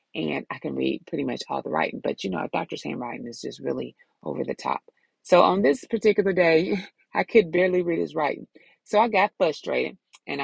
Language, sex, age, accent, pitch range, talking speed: English, female, 30-49, American, 165-275 Hz, 215 wpm